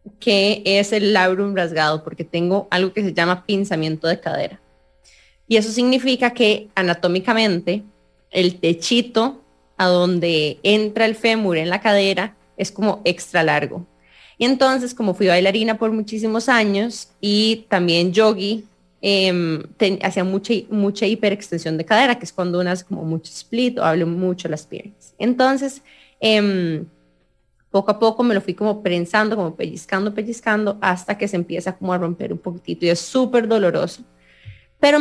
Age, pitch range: 20-39, 175-220 Hz